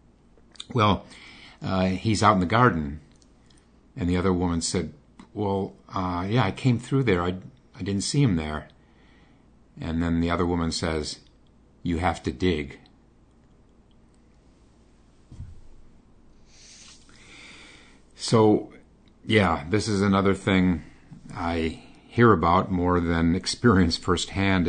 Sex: male